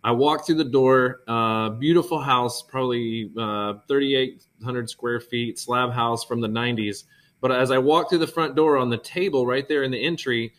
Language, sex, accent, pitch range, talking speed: English, male, American, 120-145 Hz, 195 wpm